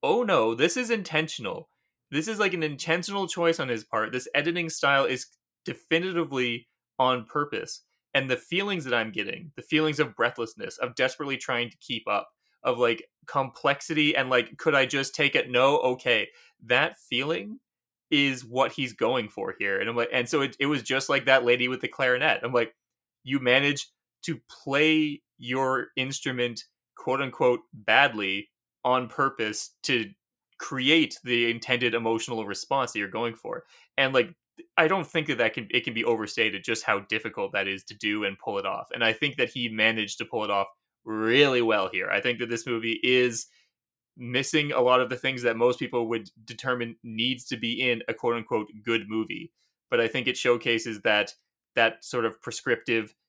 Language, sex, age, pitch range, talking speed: English, male, 20-39, 115-145 Hz, 190 wpm